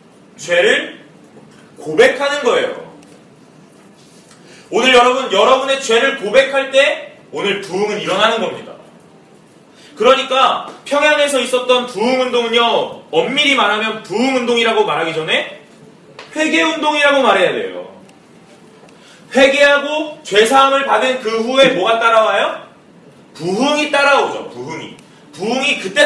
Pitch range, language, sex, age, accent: 215-295 Hz, Korean, male, 30-49, native